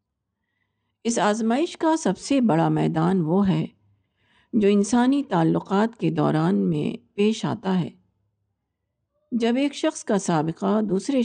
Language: Urdu